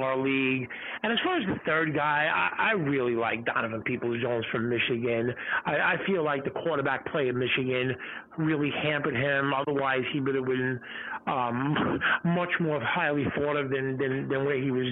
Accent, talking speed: American, 185 wpm